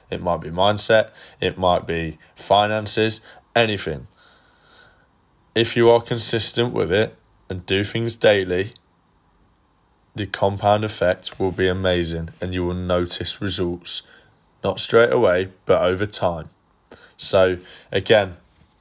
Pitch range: 90-110 Hz